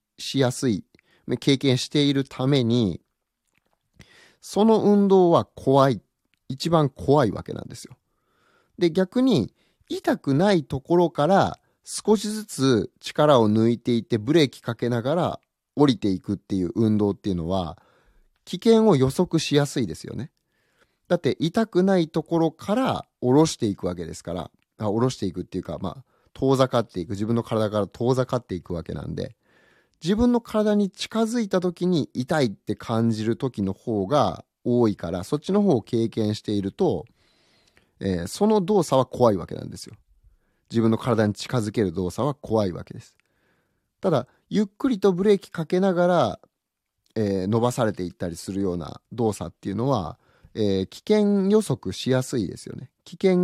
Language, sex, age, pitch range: Japanese, male, 30-49, 105-175 Hz